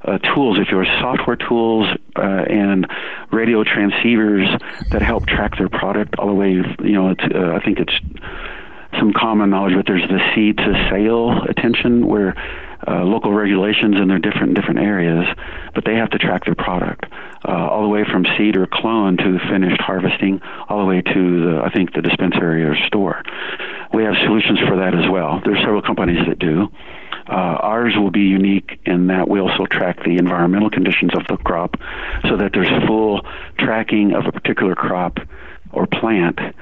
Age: 50-69